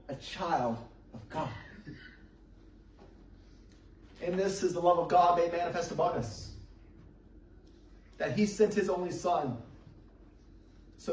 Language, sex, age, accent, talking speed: English, male, 30-49, American, 120 wpm